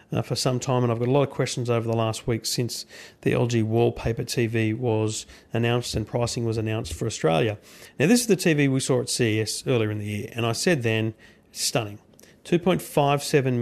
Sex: male